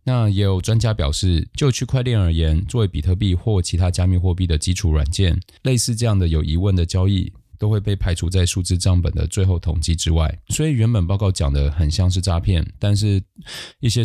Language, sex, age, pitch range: Chinese, male, 20-39, 80-100 Hz